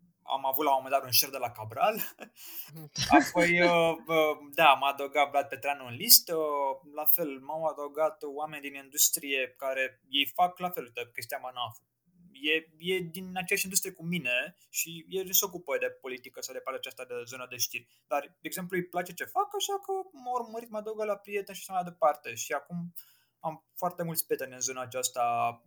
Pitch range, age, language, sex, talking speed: 130-175 Hz, 20-39, Romanian, male, 200 wpm